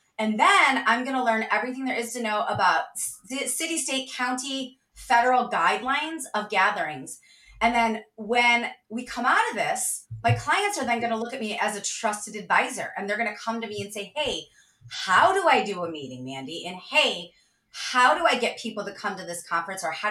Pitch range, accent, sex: 205-260 Hz, American, female